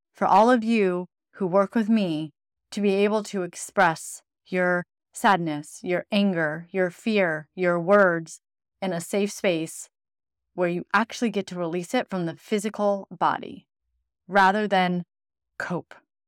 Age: 30-49